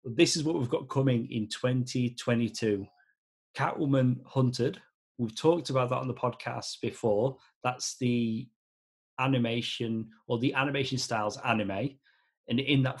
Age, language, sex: 30-49, English, male